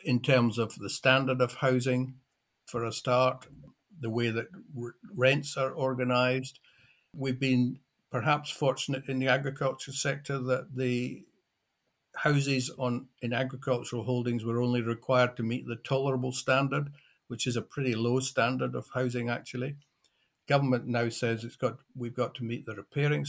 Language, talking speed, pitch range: English, 150 wpm, 120-135 Hz